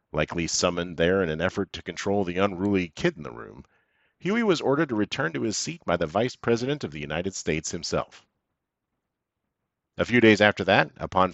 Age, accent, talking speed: 50-69, American, 195 wpm